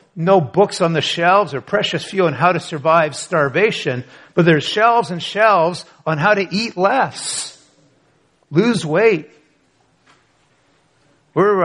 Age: 50-69